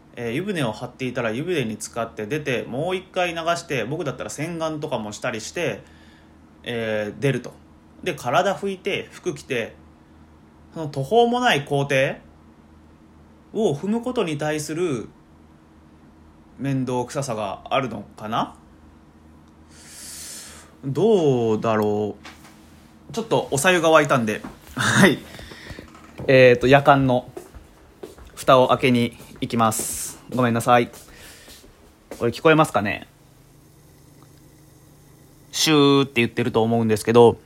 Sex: male